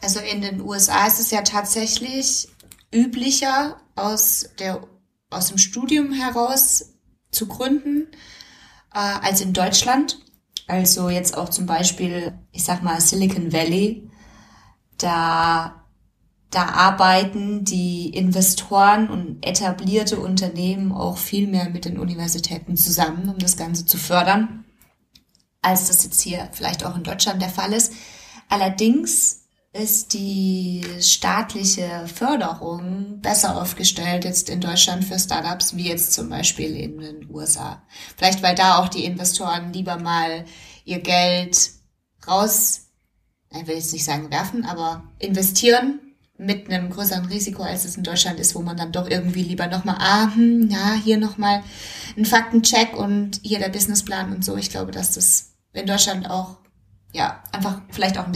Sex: female